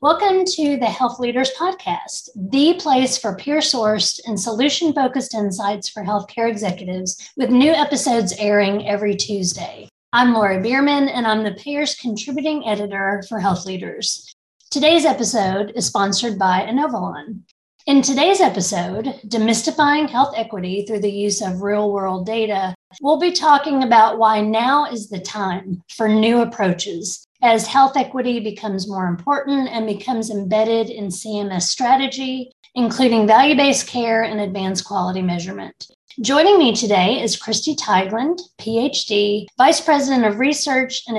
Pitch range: 205-265 Hz